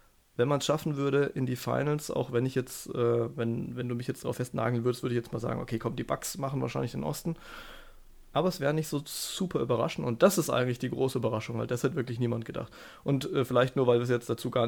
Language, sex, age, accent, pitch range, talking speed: German, male, 20-39, German, 120-155 Hz, 260 wpm